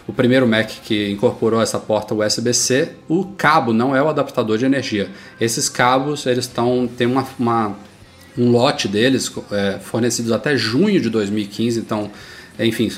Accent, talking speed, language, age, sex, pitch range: Brazilian, 145 wpm, Portuguese, 20-39, male, 110-130 Hz